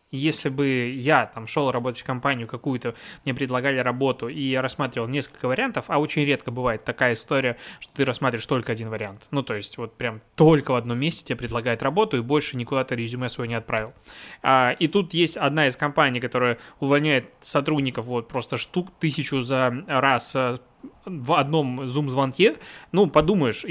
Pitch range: 125-150 Hz